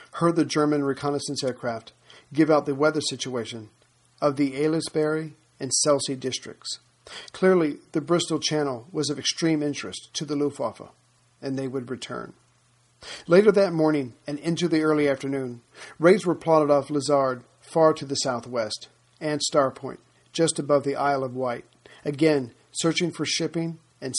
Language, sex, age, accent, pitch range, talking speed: English, male, 50-69, American, 135-155 Hz, 155 wpm